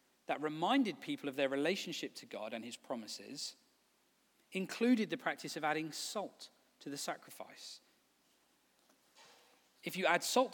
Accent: British